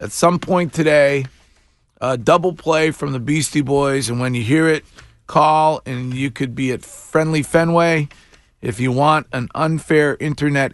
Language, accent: English, American